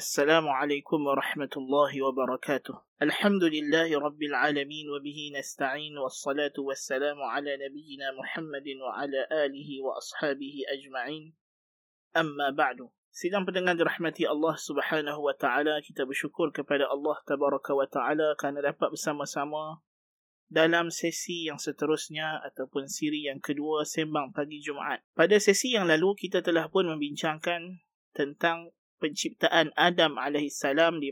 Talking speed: 125 wpm